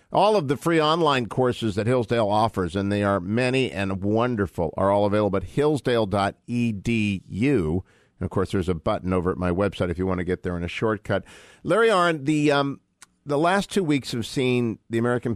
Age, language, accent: 50-69, English, American